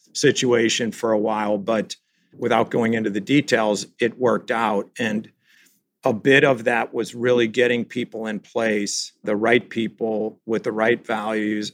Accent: American